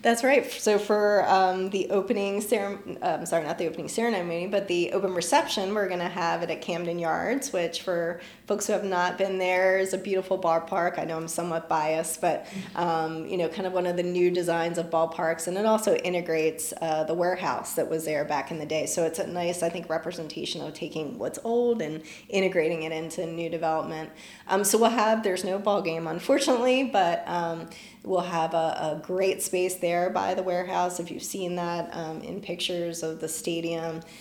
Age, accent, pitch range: 30-49, American, 165-195 Hz